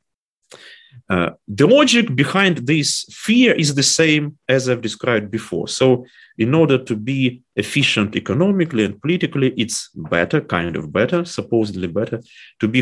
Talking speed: 145 wpm